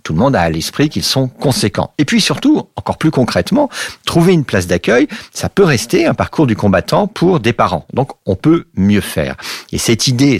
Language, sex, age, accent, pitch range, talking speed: French, male, 50-69, French, 90-140 Hz, 215 wpm